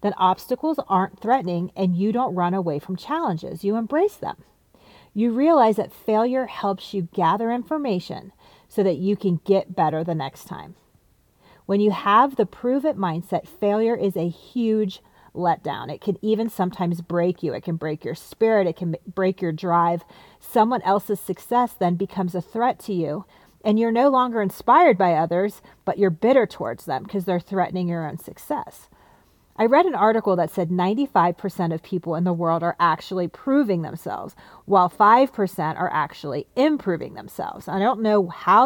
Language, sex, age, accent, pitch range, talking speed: English, female, 40-59, American, 180-220 Hz, 170 wpm